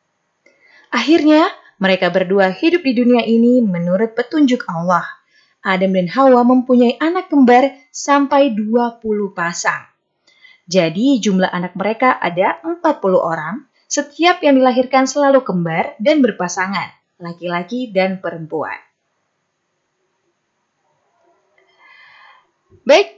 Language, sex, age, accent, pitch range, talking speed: Indonesian, female, 20-39, native, 180-245 Hz, 95 wpm